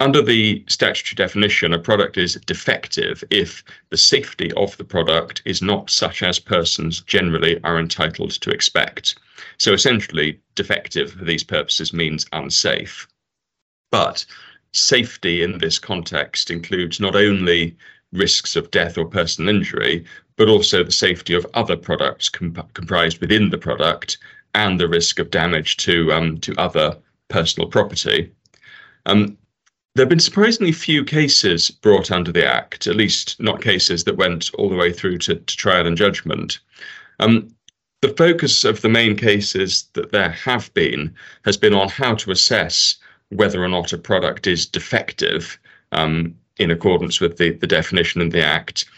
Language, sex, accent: English, male, British